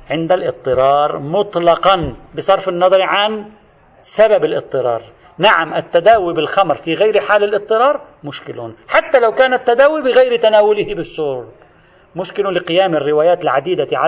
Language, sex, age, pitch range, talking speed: Arabic, male, 40-59, 150-210 Hz, 115 wpm